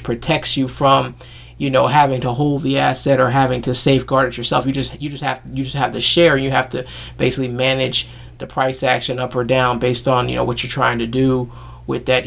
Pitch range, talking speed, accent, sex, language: 125-135 Hz, 235 wpm, American, male, English